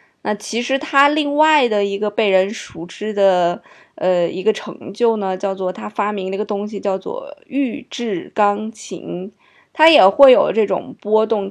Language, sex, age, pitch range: Chinese, female, 20-39, 190-230 Hz